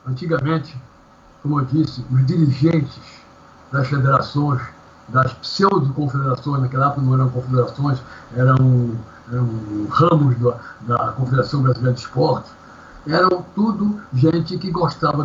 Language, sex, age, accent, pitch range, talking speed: Portuguese, male, 60-79, Brazilian, 130-165 Hz, 115 wpm